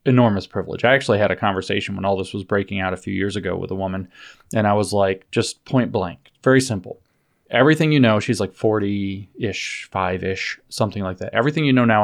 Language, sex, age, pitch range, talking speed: English, male, 20-39, 95-120 Hz, 225 wpm